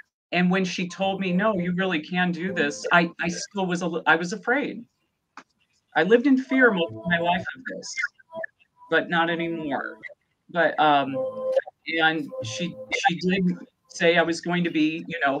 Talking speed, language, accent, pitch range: 180 wpm, English, American, 150-195 Hz